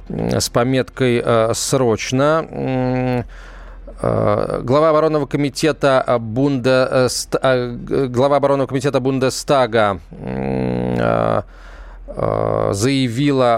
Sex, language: male, Russian